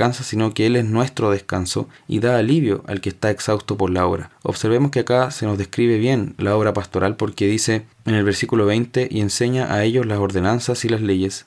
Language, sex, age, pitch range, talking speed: Spanish, male, 20-39, 100-125 Hz, 215 wpm